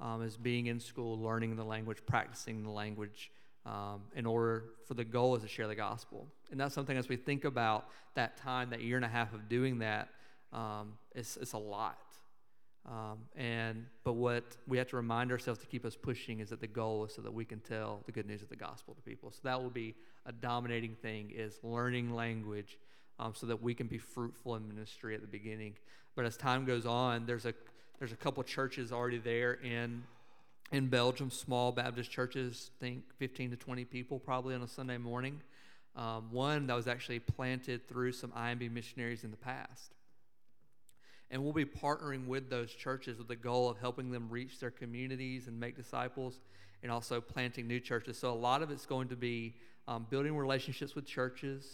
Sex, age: male, 40-59